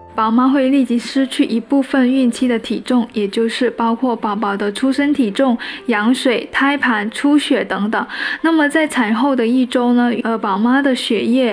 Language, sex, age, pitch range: Chinese, female, 10-29, 225-270 Hz